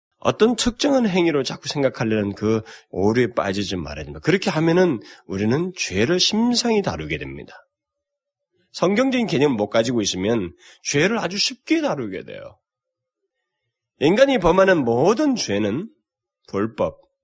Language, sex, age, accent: Korean, male, 30-49, native